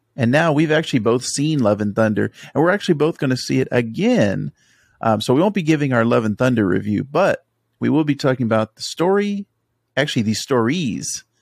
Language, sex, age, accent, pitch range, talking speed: English, male, 40-59, American, 110-140 Hz, 210 wpm